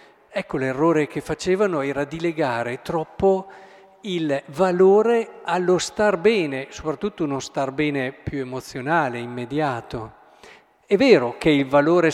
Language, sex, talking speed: Italian, male, 125 wpm